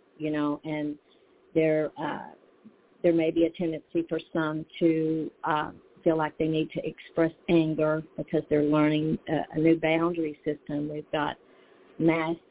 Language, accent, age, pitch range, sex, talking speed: English, American, 50-69, 145-165 Hz, female, 155 wpm